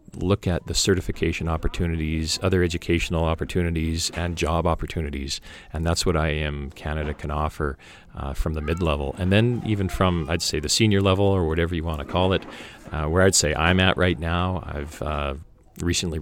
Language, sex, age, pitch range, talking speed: English, male, 40-59, 80-90 Hz, 185 wpm